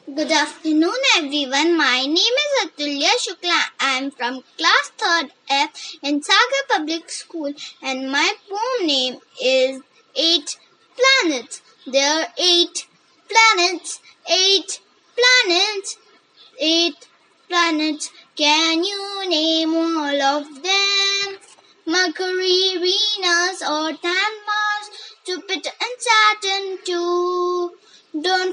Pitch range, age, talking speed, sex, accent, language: 335-405 Hz, 20-39, 100 wpm, female, native, Telugu